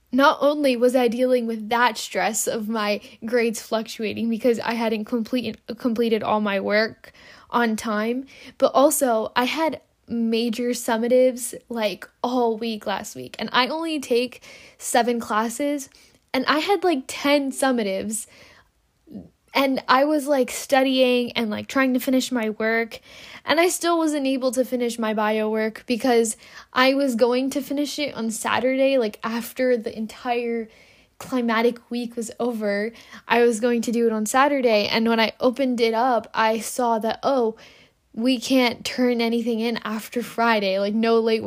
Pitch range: 220-255 Hz